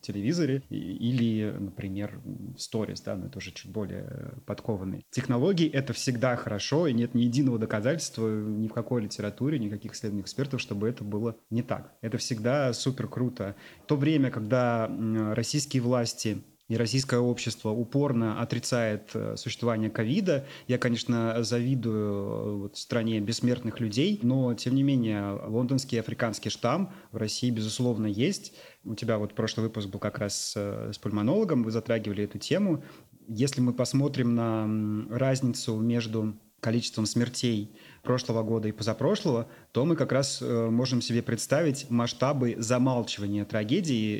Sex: male